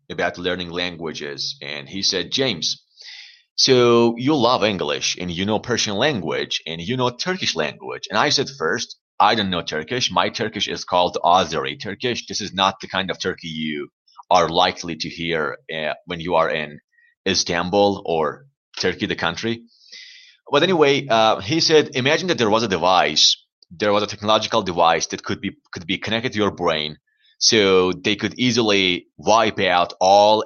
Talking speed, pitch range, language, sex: 175 wpm, 90-125 Hz, English, male